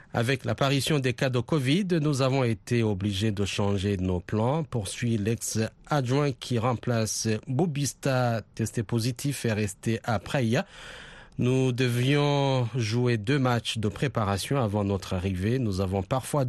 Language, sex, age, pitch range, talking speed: French, male, 40-59, 110-145 Hz, 140 wpm